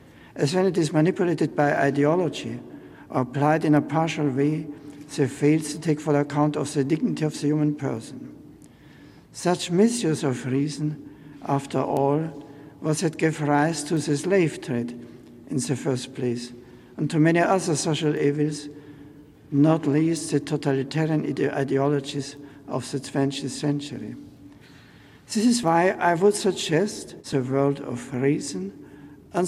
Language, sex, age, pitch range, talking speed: English, male, 60-79, 140-170 Hz, 145 wpm